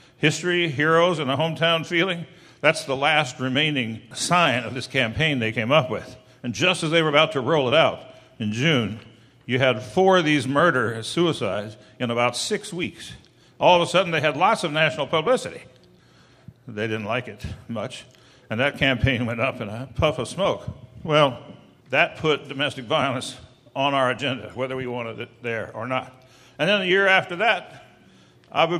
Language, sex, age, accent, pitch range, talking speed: English, male, 60-79, American, 125-160 Hz, 185 wpm